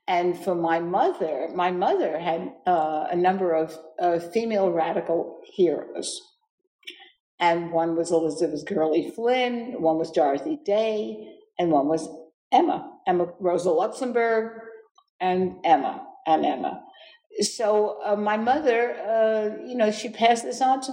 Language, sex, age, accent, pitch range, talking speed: English, female, 60-79, American, 160-240 Hz, 140 wpm